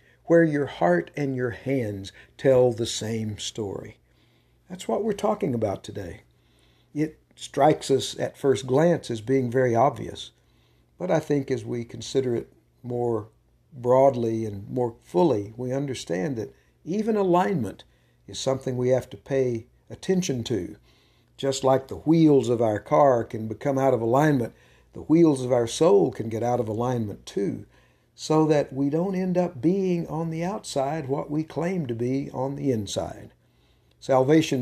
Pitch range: 115-140 Hz